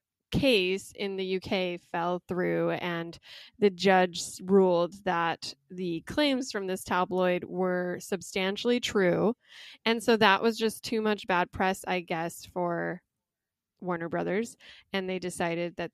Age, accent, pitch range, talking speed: 20-39, American, 180-225 Hz, 140 wpm